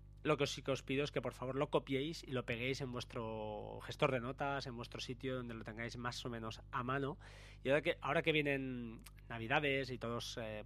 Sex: male